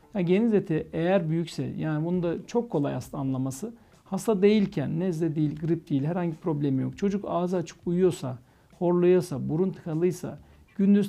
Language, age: Turkish, 60-79